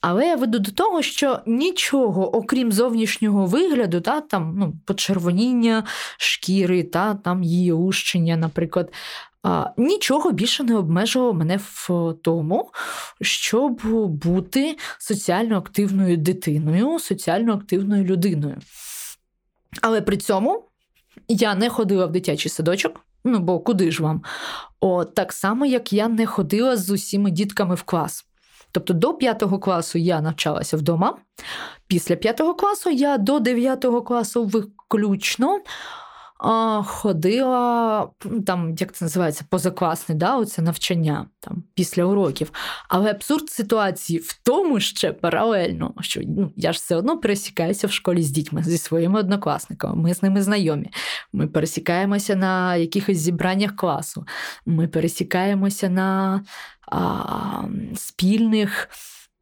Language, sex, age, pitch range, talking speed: Ukrainian, female, 20-39, 175-225 Hz, 125 wpm